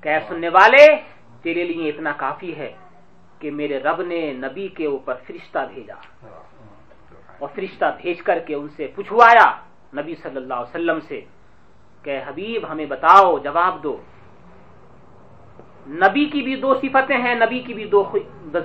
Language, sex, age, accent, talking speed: English, male, 40-59, Indian, 160 wpm